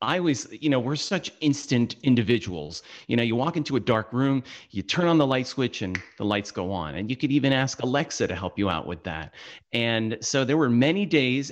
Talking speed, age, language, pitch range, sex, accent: 235 wpm, 40-59, English, 105-145 Hz, male, American